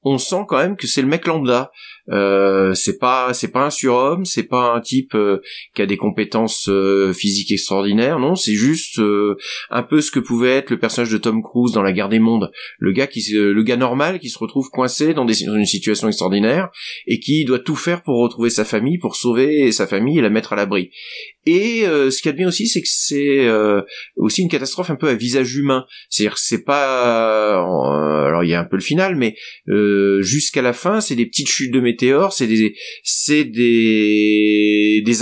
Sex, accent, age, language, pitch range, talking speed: male, French, 30-49, French, 105-140 Hz, 225 wpm